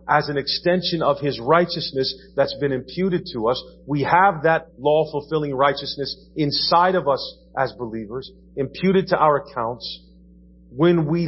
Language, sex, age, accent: English, male, 40-59, American